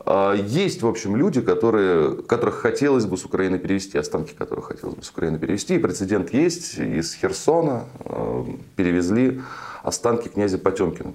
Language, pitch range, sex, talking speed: Russian, 85-110 Hz, male, 145 wpm